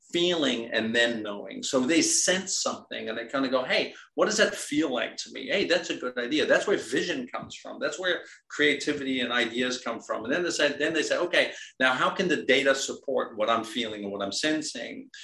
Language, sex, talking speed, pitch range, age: English, male, 230 wpm, 125-195 Hz, 50-69